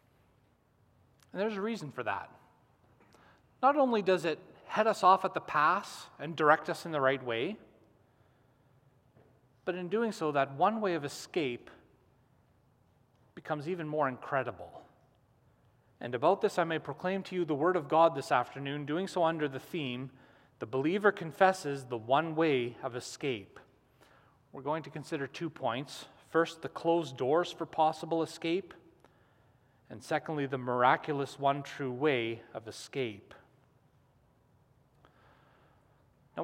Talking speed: 140 wpm